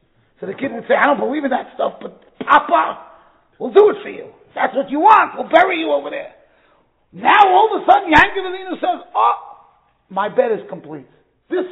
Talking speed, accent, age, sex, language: 215 wpm, American, 40-59, male, English